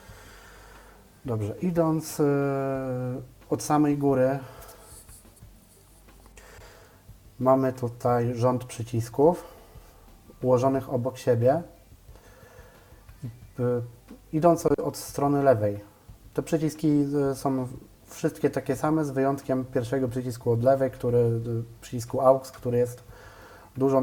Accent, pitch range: native, 110-135 Hz